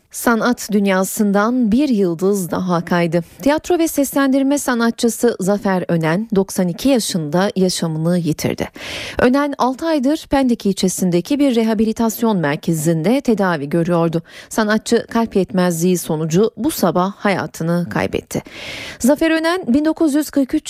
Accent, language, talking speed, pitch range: native, Turkish, 105 wpm, 180-245 Hz